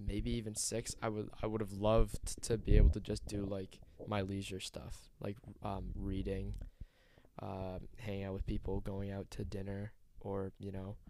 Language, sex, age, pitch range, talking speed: English, male, 20-39, 95-110 Hz, 185 wpm